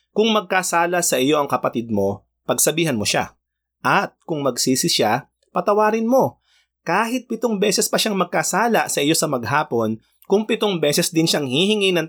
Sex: male